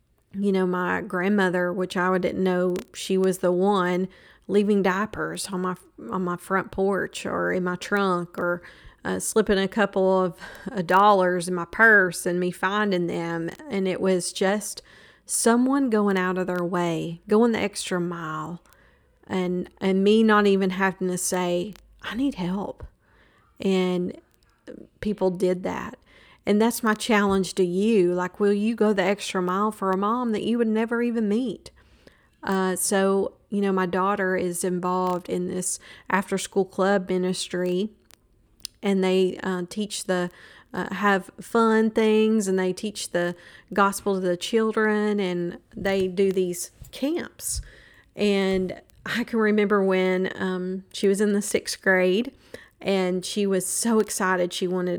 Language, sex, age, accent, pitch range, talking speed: English, female, 40-59, American, 180-205 Hz, 160 wpm